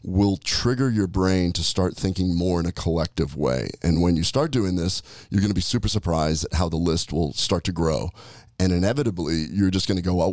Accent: American